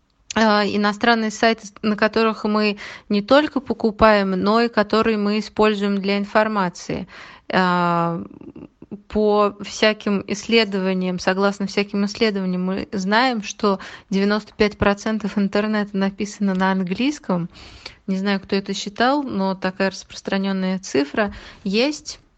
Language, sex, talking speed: Russian, female, 105 wpm